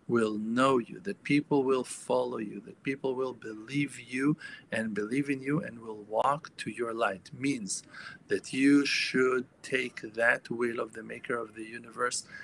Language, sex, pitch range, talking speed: English, male, 115-135 Hz, 175 wpm